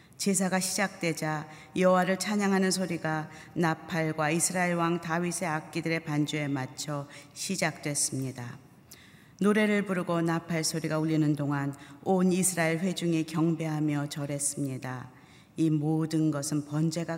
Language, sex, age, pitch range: Korean, female, 40-59, 150-180 Hz